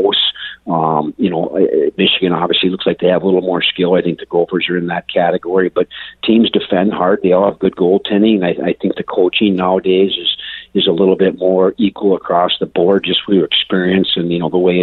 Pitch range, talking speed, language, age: 90-110 Hz, 225 wpm, English, 50-69